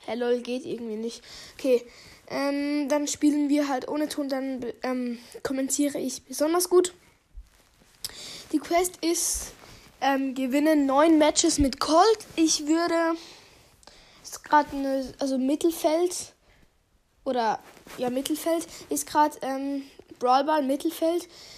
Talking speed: 115 wpm